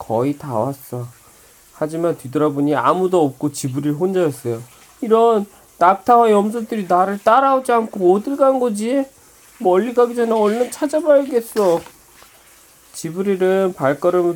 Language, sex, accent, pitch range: Korean, male, native, 135-190 Hz